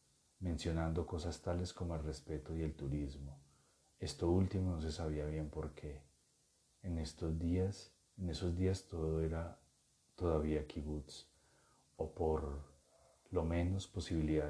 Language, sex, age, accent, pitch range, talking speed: Spanish, male, 40-59, Colombian, 75-90 Hz, 130 wpm